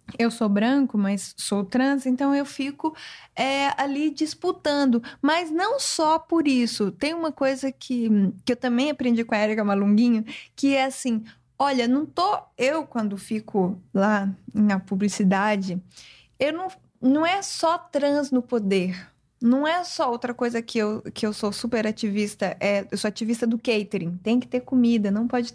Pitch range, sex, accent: 215-285 Hz, female, Brazilian